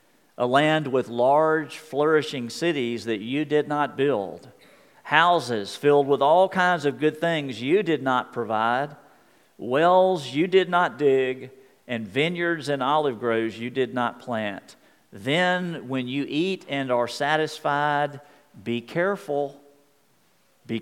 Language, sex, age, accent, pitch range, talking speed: English, male, 50-69, American, 120-160 Hz, 135 wpm